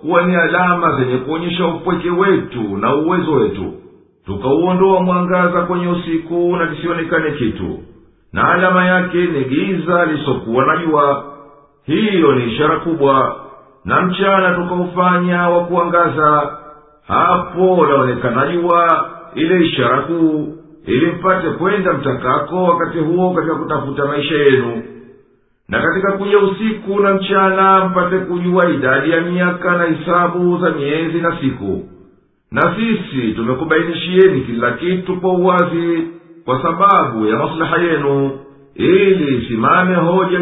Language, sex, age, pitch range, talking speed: Swahili, male, 50-69, 150-180 Hz, 120 wpm